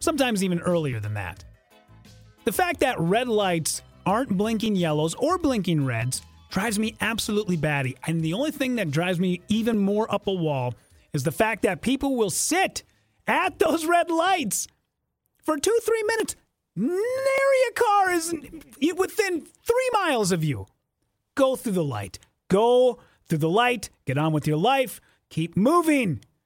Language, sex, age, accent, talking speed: English, male, 30-49, American, 160 wpm